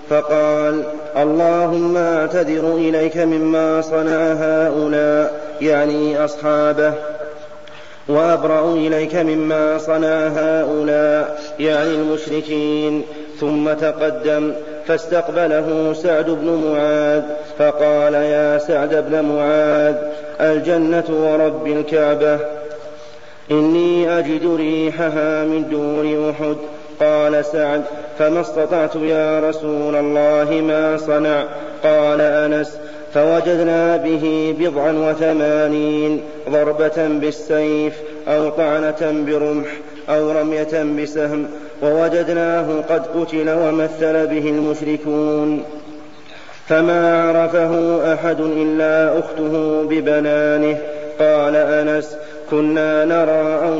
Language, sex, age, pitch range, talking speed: Arabic, male, 30-49, 150-155 Hz, 85 wpm